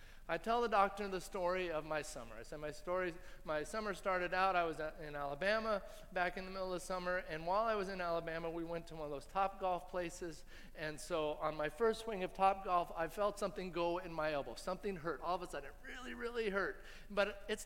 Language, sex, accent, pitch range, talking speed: English, male, American, 170-210 Hz, 240 wpm